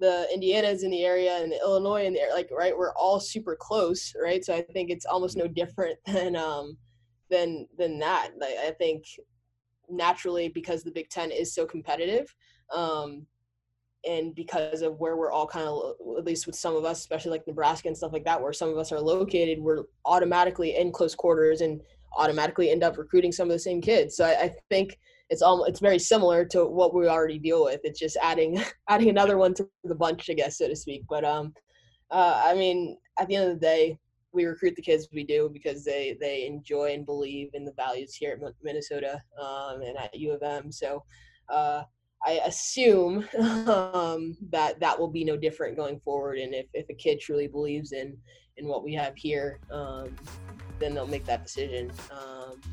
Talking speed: 205 wpm